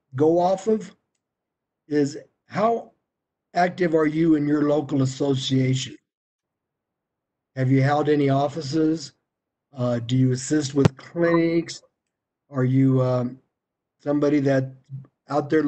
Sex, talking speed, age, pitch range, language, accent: male, 115 wpm, 50-69, 135-170 Hz, English, American